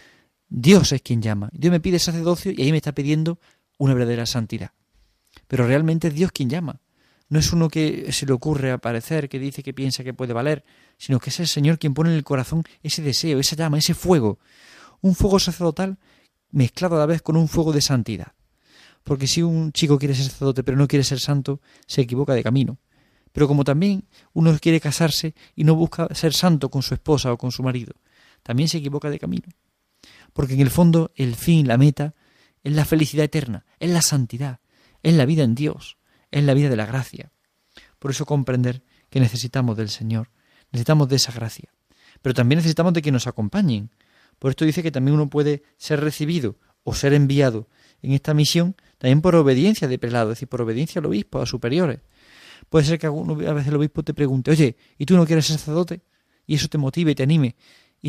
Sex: male